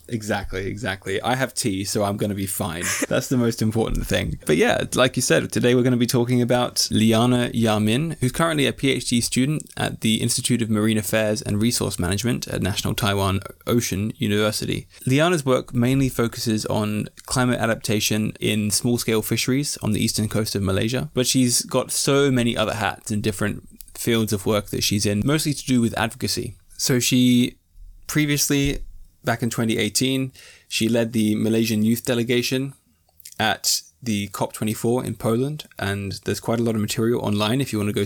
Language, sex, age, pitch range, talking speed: English, male, 20-39, 105-125 Hz, 180 wpm